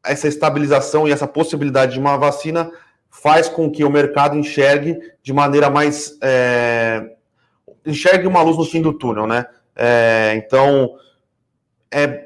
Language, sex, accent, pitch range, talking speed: Portuguese, male, Brazilian, 130-155 Hz, 130 wpm